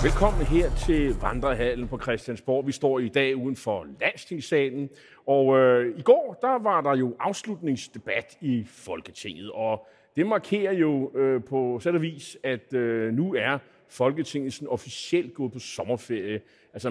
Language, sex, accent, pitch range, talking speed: Danish, male, native, 115-145 Hz, 150 wpm